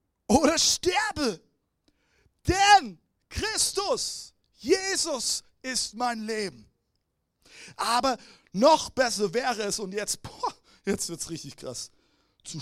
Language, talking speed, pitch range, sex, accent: German, 95 wpm, 205-315 Hz, male, German